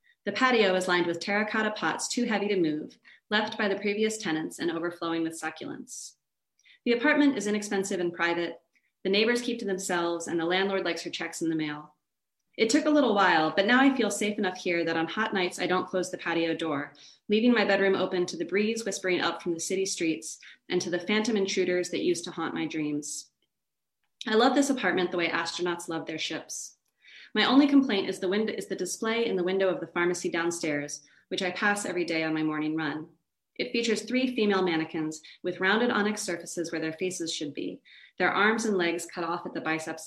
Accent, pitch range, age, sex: American, 165-215 Hz, 30-49, female